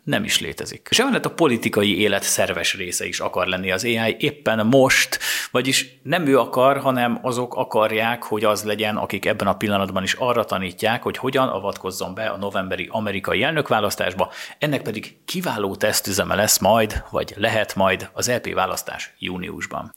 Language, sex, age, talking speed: Hungarian, male, 30-49, 160 wpm